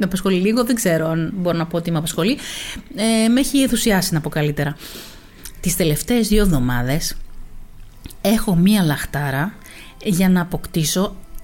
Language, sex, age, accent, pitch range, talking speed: Greek, female, 30-49, native, 175-225 Hz, 145 wpm